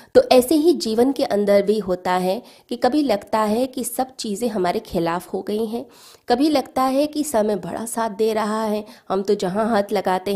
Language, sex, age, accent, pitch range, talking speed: Hindi, female, 20-39, native, 190-245 Hz, 210 wpm